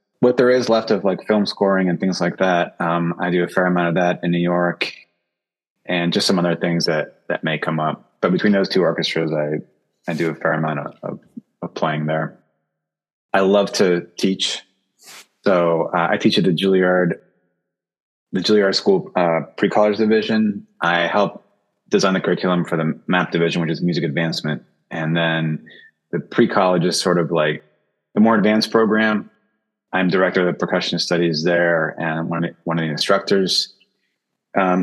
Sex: male